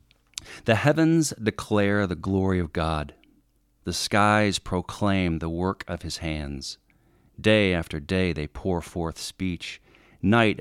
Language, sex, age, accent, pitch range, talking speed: English, male, 40-59, American, 80-105 Hz, 130 wpm